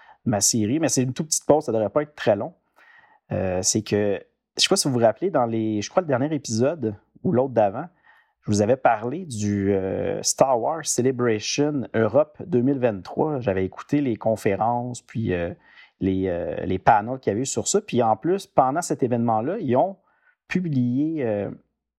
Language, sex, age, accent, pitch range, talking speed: French, male, 40-59, Canadian, 105-145 Hz, 200 wpm